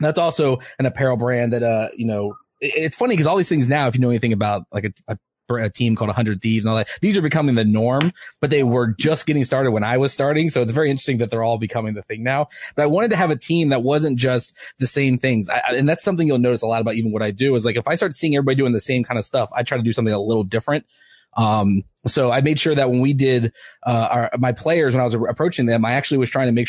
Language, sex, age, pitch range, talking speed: English, male, 20-39, 115-140 Hz, 285 wpm